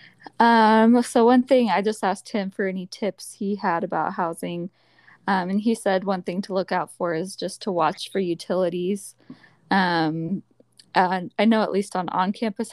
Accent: American